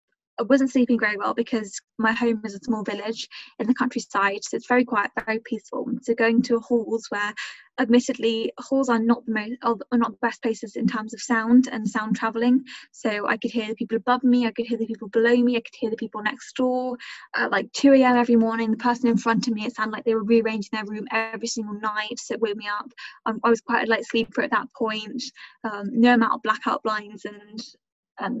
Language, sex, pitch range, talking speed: English, female, 220-245 Hz, 235 wpm